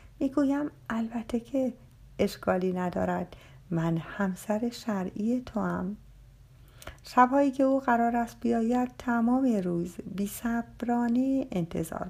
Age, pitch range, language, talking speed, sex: 50-69, 170-235 Hz, Persian, 105 wpm, female